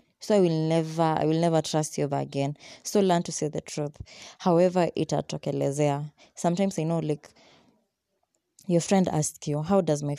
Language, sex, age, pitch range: English, female, 20-39, 150-175 Hz